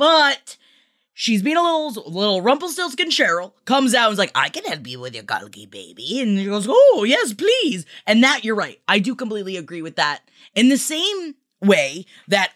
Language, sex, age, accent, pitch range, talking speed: English, female, 20-39, American, 185-265 Hz, 200 wpm